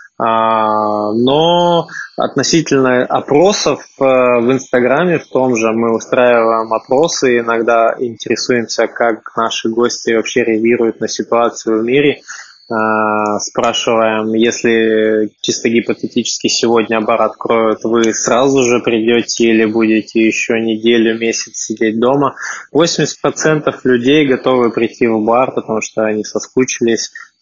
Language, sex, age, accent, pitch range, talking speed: Russian, male, 20-39, native, 110-125 Hz, 110 wpm